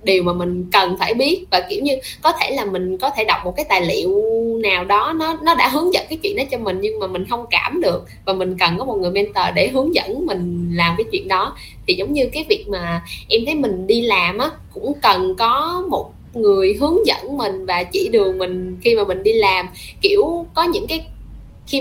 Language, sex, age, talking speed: Vietnamese, female, 10-29, 240 wpm